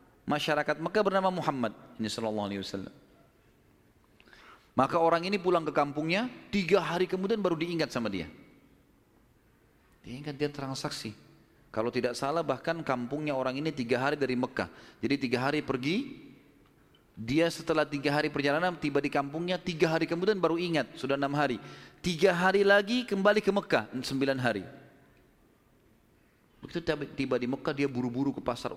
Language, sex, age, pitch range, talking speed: Indonesian, male, 30-49, 125-175 Hz, 150 wpm